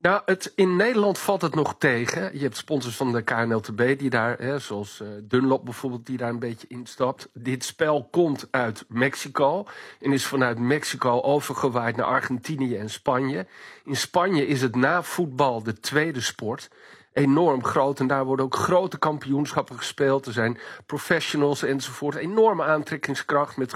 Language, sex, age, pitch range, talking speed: Dutch, male, 50-69, 130-155 Hz, 160 wpm